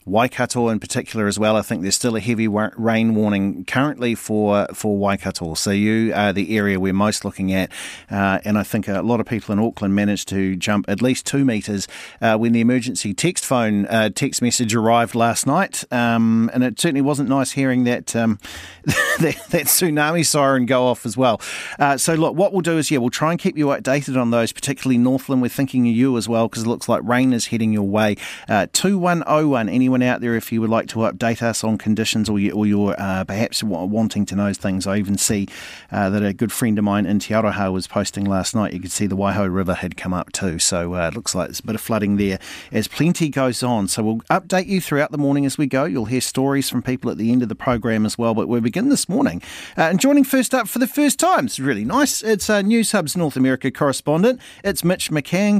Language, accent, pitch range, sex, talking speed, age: English, Australian, 105-140 Hz, male, 235 wpm, 40-59